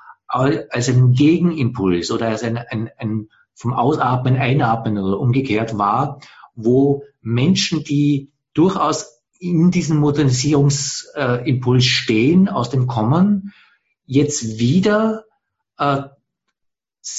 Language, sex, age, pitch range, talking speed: English, male, 50-69, 130-165 Hz, 100 wpm